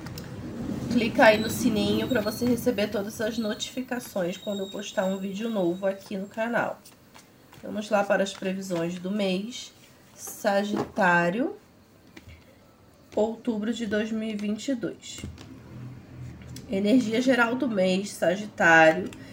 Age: 20-39